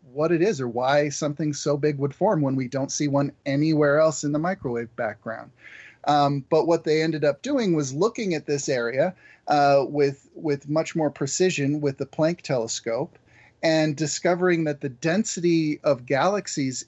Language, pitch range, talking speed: English, 140-175 Hz, 180 wpm